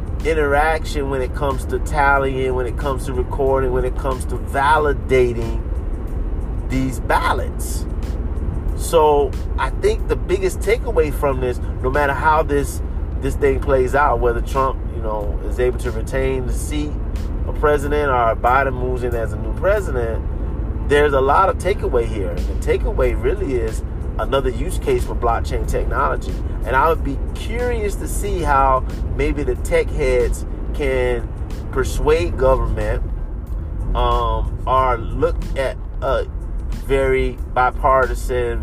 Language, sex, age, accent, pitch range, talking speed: English, male, 30-49, American, 80-130 Hz, 145 wpm